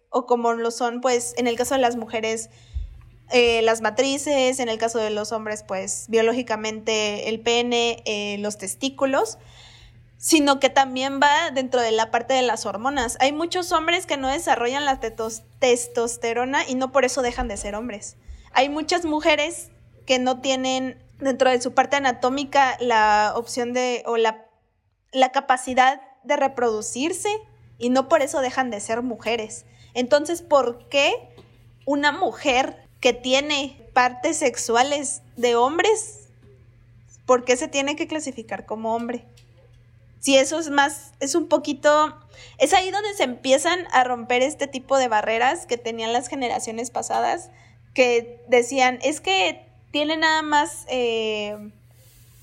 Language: Spanish